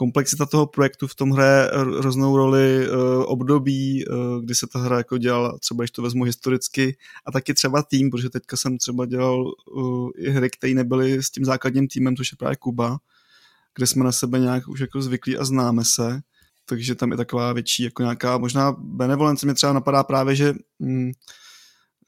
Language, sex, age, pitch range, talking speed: Czech, male, 20-39, 125-140 Hz, 190 wpm